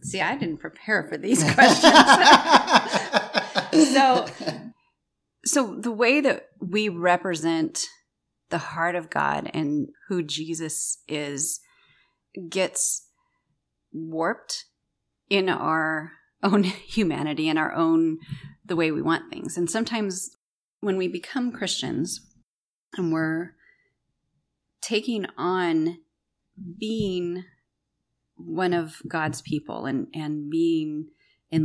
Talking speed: 105 wpm